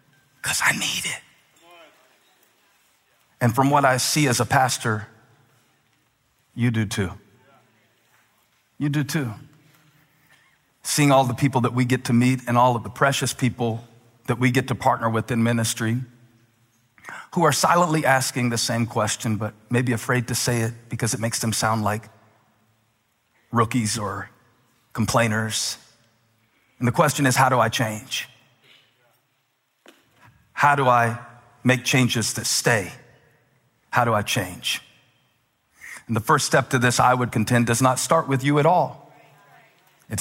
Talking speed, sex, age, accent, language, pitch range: 150 wpm, male, 40-59, American, English, 110-130 Hz